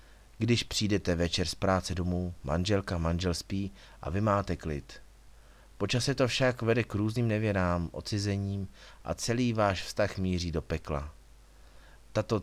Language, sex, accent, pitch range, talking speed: Czech, male, native, 85-105 Hz, 145 wpm